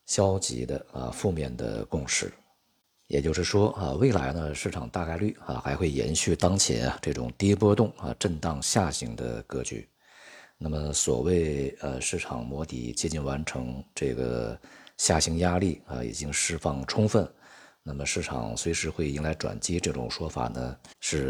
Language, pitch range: Chinese, 65-90 Hz